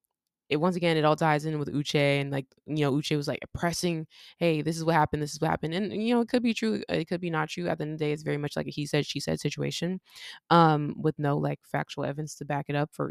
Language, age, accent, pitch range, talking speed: English, 20-39, American, 145-170 Hz, 300 wpm